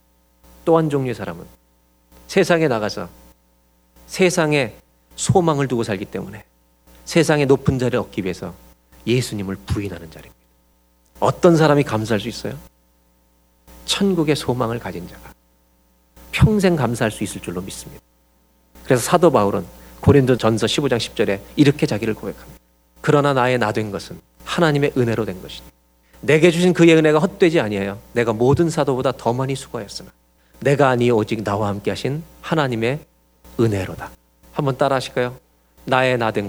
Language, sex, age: Korean, male, 40-59